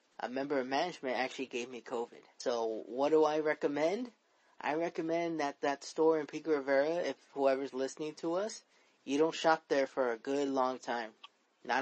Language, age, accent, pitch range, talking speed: English, 20-39, American, 135-155 Hz, 185 wpm